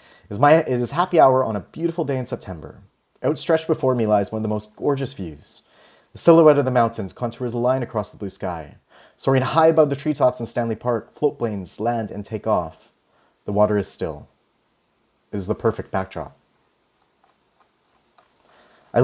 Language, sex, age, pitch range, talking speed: English, male, 30-49, 100-125 Hz, 175 wpm